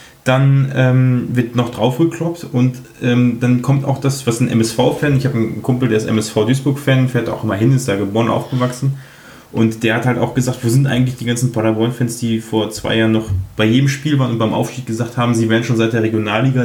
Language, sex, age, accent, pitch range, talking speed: German, male, 20-39, German, 115-135 Hz, 230 wpm